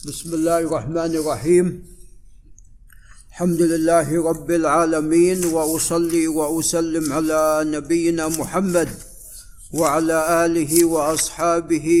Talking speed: 80 wpm